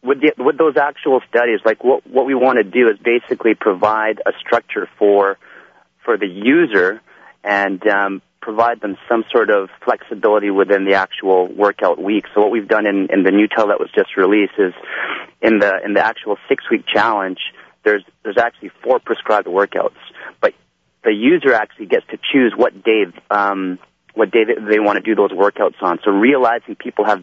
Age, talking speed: 30-49, 190 wpm